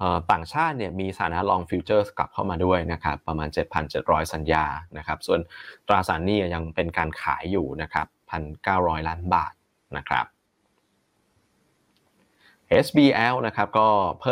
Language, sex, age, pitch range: Thai, male, 20-39, 85-105 Hz